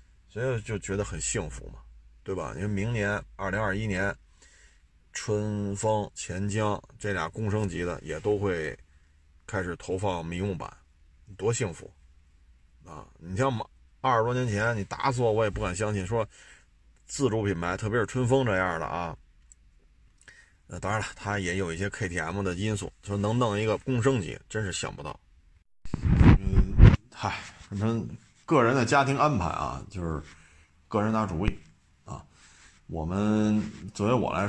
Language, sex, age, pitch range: Chinese, male, 30-49, 80-110 Hz